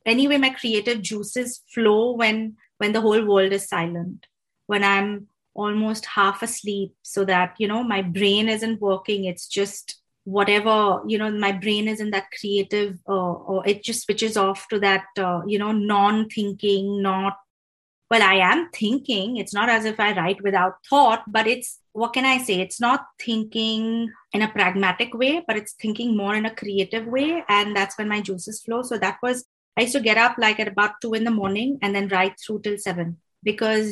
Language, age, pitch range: English, 20-39, 200-235 Hz